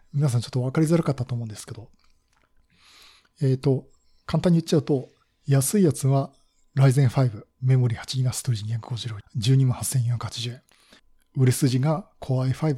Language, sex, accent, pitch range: Japanese, male, native, 125-160 Hz